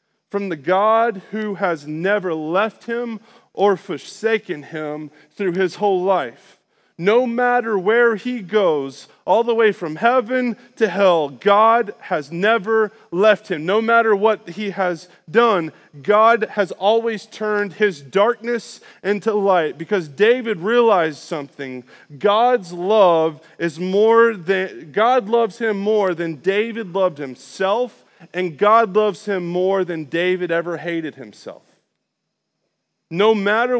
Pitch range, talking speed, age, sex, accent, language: 160-215 Hz, 135 wpm, 30-49, male, American, English